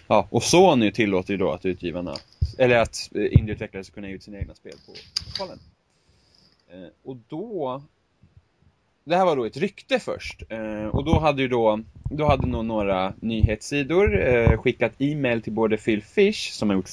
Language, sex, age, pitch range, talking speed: Swedish, male, 20-39, 95-115 Hz, 175 wpm